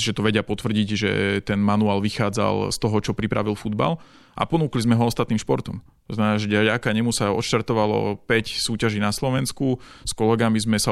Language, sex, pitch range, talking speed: Slovak, male, 110-120 Hz, 175 wpm